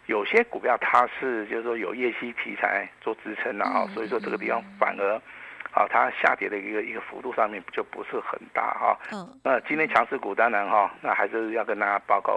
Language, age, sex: Chinese, 50-69, male